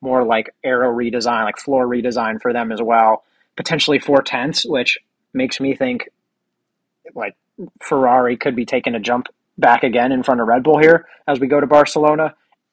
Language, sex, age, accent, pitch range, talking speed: English, male, 30-49, American, 125-155 Hz, 175 wpm